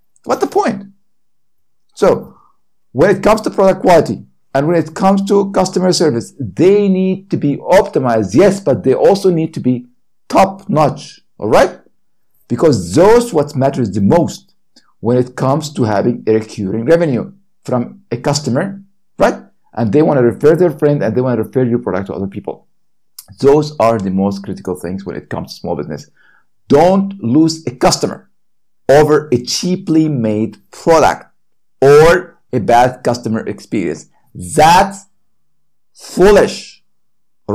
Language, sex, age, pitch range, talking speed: English, male, 50-69, 115-185 Hz, 155 wpm